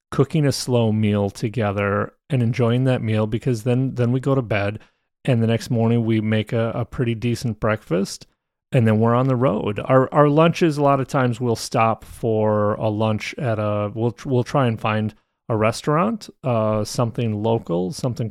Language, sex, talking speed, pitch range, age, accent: English, male, 190 wpm, 110-130 Hz, 30-49, American